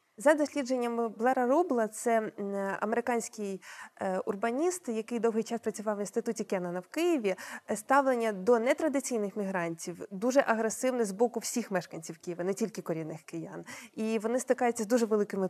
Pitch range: 210-265 Hz